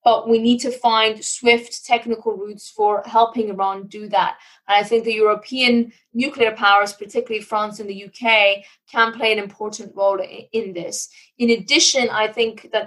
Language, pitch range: English, 210-240 Hz